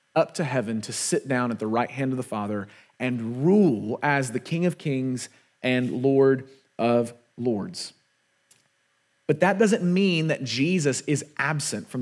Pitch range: 140-195 Hz